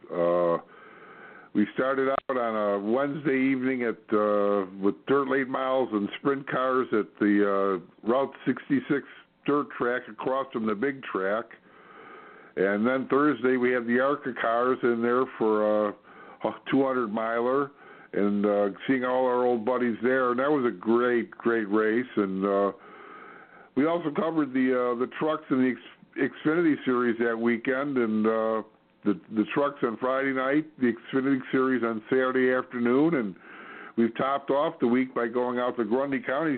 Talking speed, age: 165 wpm, 60-79